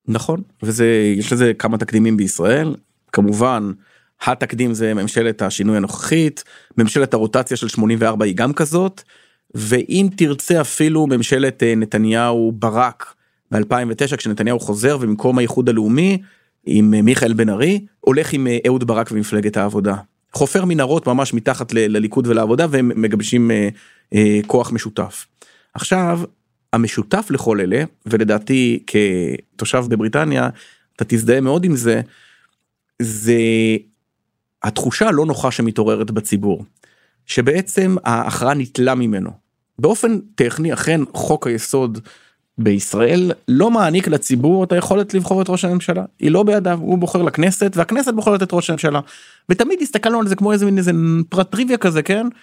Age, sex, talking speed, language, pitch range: 30-49, male, 130 wpm, Hebrew, 110-170 Hz